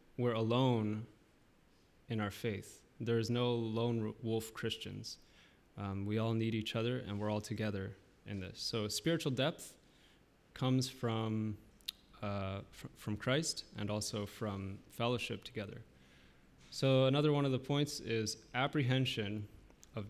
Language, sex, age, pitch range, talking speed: English, male, 20-39, 105-125 Hz, 135 wpm